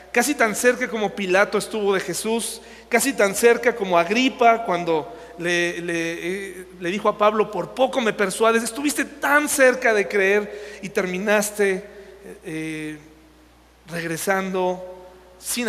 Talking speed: 125 wpm